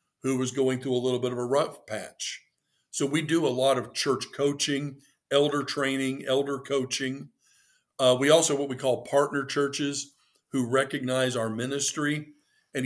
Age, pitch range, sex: 50-69, 125-145 Hz, male